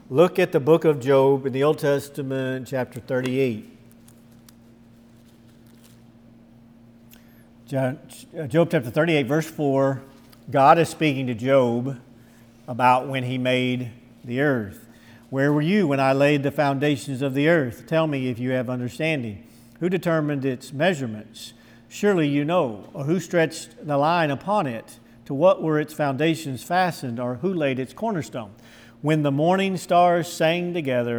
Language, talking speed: English, 145 wpm